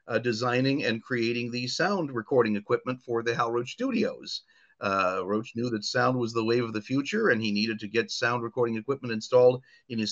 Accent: American